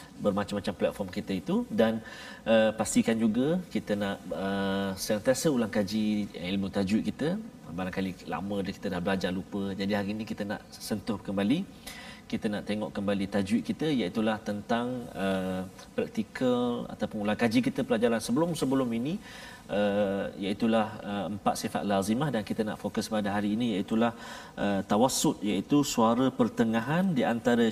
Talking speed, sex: 155 wpm, male